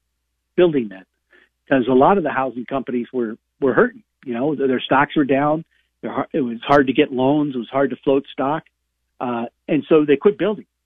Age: 50-69